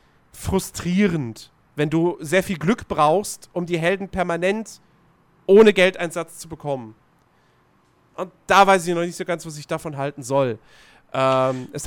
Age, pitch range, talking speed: 40-59, 155-200 Hz, 150 wpm